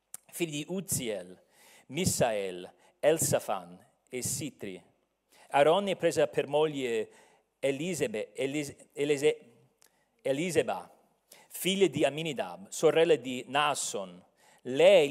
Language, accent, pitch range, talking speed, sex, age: Italian, native, 130-175 Hz, 75 wpm, male, 40-59